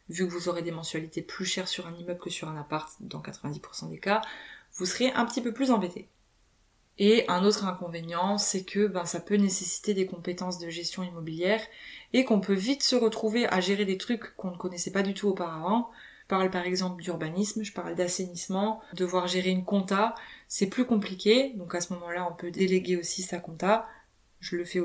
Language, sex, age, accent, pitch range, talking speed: French, female, 20-39, French, 180-210 Hz, 210 wpm